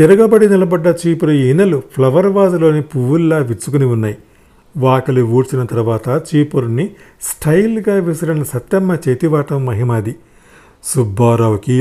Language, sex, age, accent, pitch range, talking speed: Telugu, male, 50-69, native, 130-185 Hz, 95 wpm